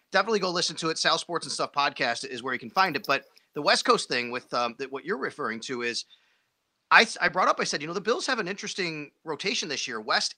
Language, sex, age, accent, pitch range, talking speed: English, male, 30-49, American, 130-165 Hz, 270 wpm